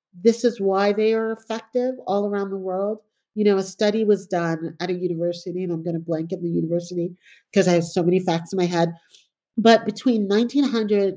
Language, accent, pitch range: English, American, 170-215 Hz